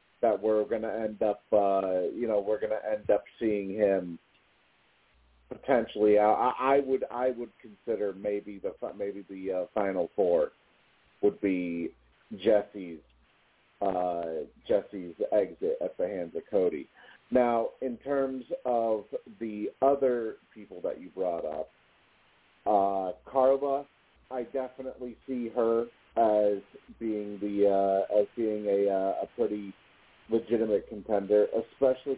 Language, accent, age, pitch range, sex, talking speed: English, American, 40-59, 100-130 Hz, male, 130 wpm